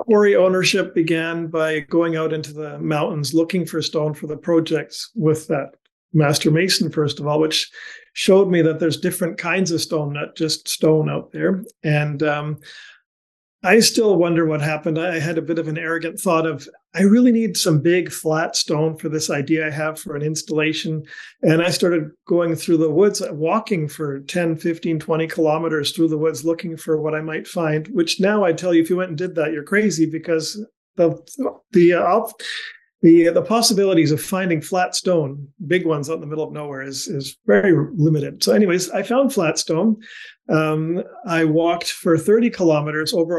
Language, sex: English, male